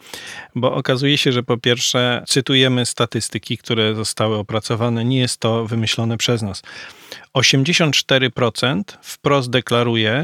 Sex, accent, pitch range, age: male, native, 120-140 Hz, 40-59